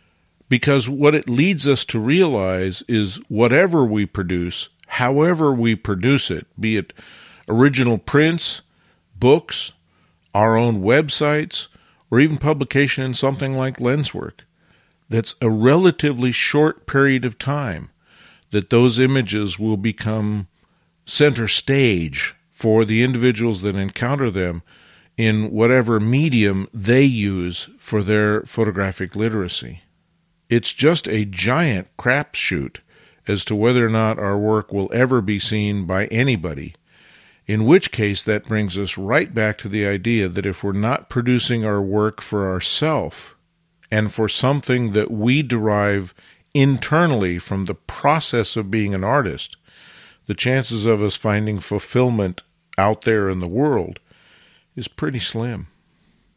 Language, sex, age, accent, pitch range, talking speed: English, male, 50-69, American, 100-130 Hz, 135 wpm